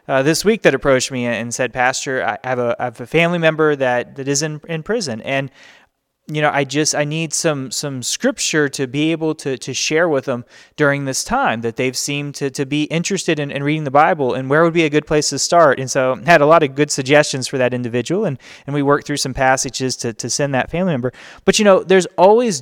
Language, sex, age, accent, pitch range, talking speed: English, male, 20-39, American, 125-160 Hz, 250 wpm